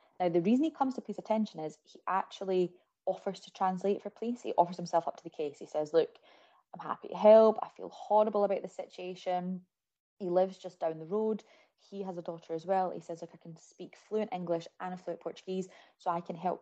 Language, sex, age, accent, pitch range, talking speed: English, female, 20-39, British, 160-190 Hz, 230 wpm